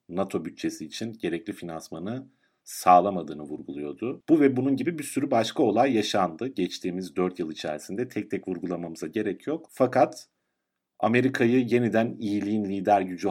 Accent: native